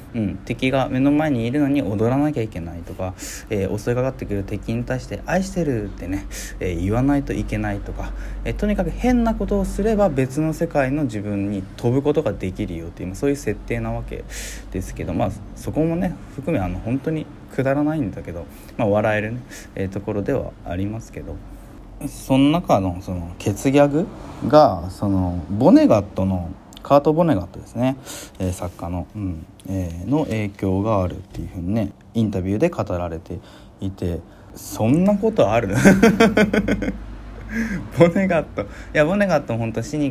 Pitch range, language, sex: 95-140 Hz, Japanese, male